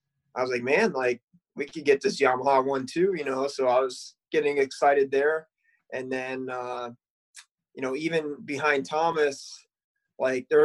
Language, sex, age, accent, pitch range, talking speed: English, male, 20-39, American, 130-160 Hz, 170 wpm